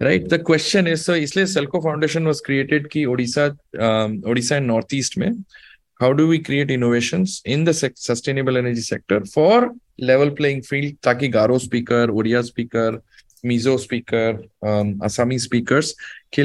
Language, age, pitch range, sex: Hindi, 20-39, 115-150 Hz, male